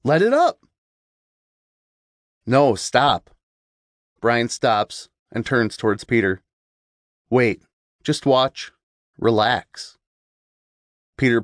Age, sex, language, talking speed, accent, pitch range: 30-49, male, English, 85 wpm, American, 105-130 Hz